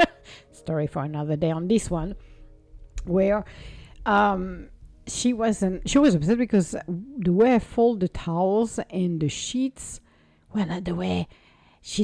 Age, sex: 60-79, female